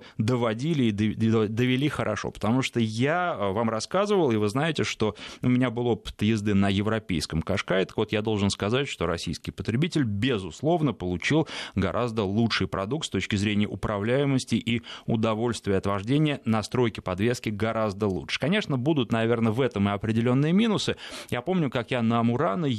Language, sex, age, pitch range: Russian, male, 20-39, 105-135 Hz